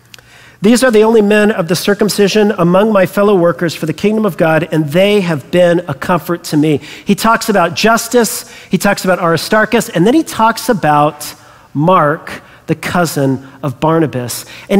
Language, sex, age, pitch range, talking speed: English, male, 40-59, 180-230 Hz, 180 wpm